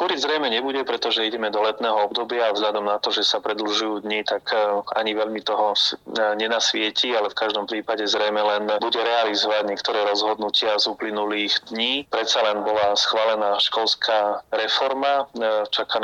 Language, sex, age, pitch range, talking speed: Slovak, male, 30-49, 105-110 Hz, 155 wpm